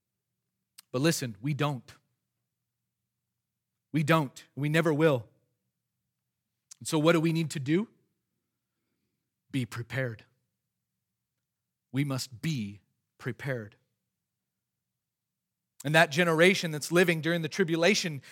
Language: English